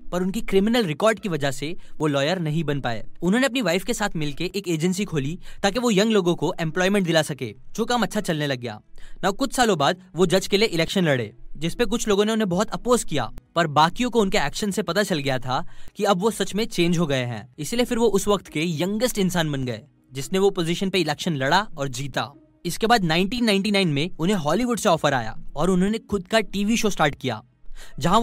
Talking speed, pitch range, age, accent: 230 wpm, 155-215 Hz, 10-29, native